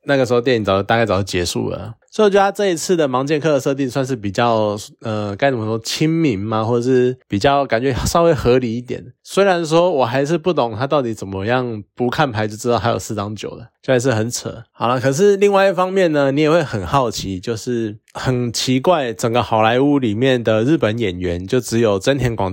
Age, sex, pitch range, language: 20-39, male, 110-145 Hz, Chinese